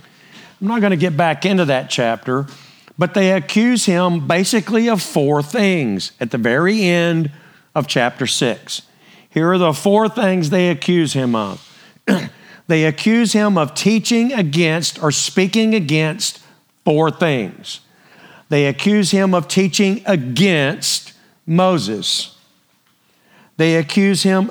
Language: English